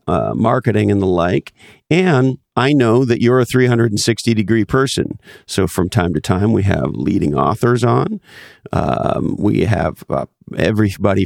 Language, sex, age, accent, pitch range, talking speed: English, male, 50-69, American, 95-125 Hz, 155 wpm